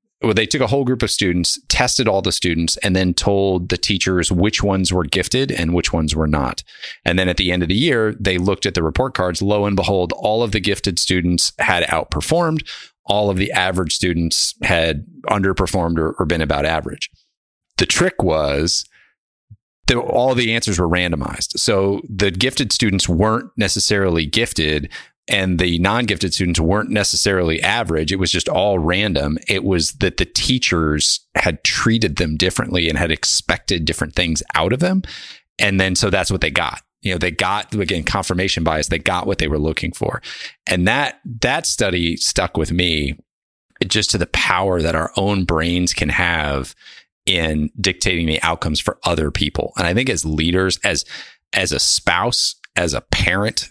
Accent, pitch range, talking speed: American, 85-100 Hz, 180 wpm